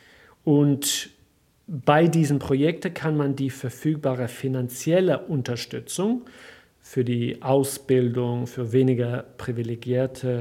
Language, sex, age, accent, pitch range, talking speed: English, male, 40-59, German, 125-145 Hz, 90 wpm